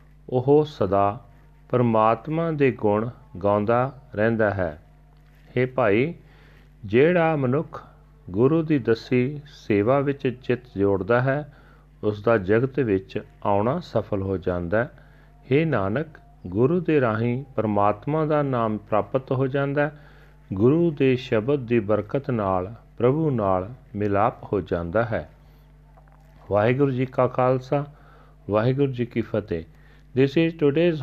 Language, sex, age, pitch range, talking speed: Punjabi, male, 40-59, 110-145 Hz, 125 wpm